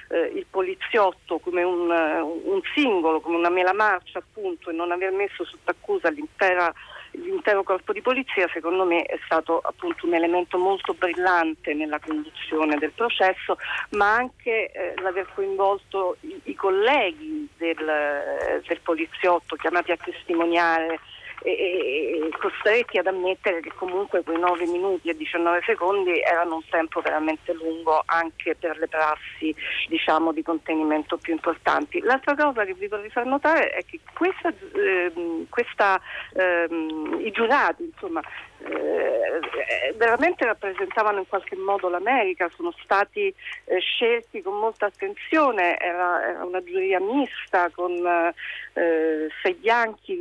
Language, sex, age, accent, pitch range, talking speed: Italian, female, 40-59, native, 170-280 Hz, 140 wpm